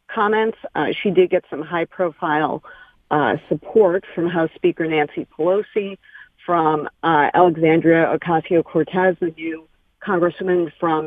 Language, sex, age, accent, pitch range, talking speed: English, female, 40-59, American, 155-185 Hz, 125 wpm